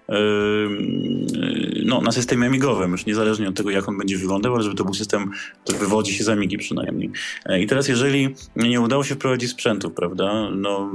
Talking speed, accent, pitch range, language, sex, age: 180 wpm, native, 95-115 Hz, Polish, male, 20-39